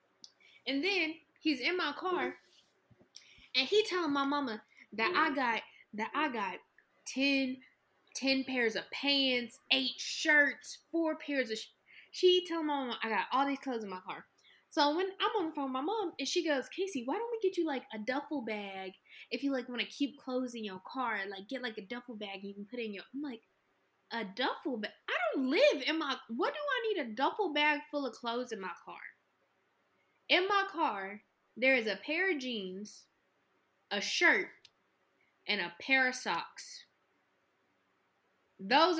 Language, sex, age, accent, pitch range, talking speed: English, female, 10-29, American, 245-320 Hz, 195 wpm